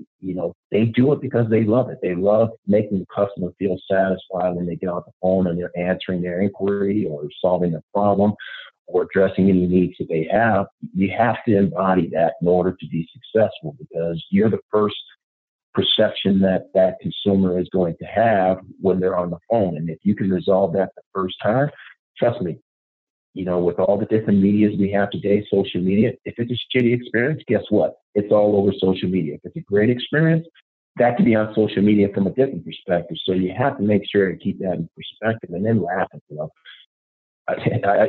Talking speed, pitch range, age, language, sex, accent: 210 wpm, 90-110 Hz, 50-69, English, male, American